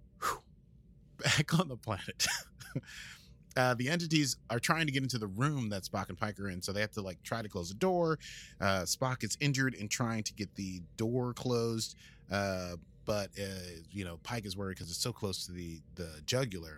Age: 30-49